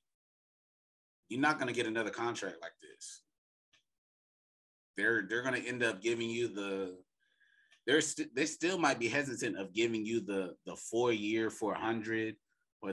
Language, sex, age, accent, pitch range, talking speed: English, male, 20-39, American, 100-165 Hz, 155 wpm